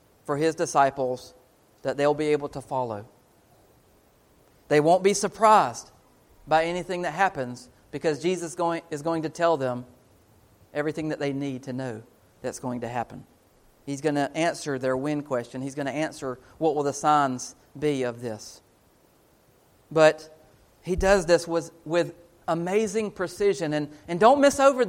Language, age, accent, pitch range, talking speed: English, 40-59, American, 130-175 Hz, 155 wpm